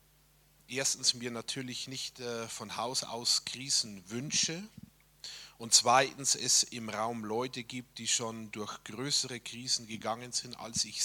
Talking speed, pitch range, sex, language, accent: 135 wpm, 125-155 Hz, male, German, German